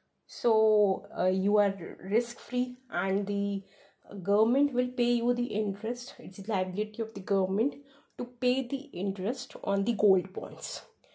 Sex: female